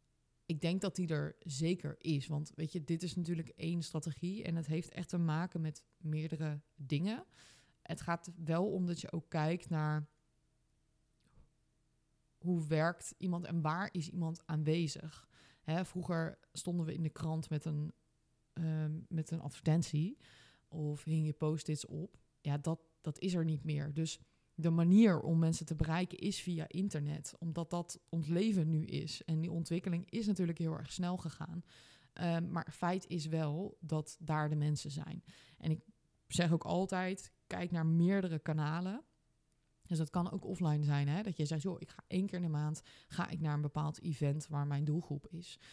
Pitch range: 155-175 Hz